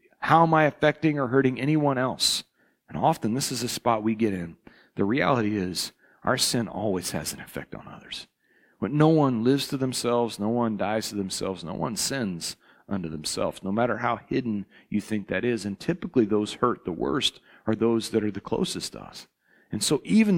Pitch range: 115-140 Hz